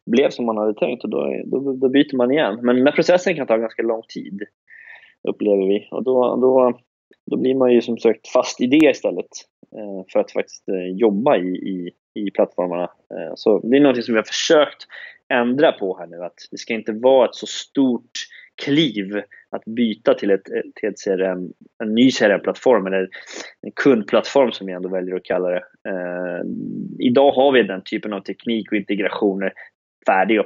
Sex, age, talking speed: male, 20-39, 185 wpm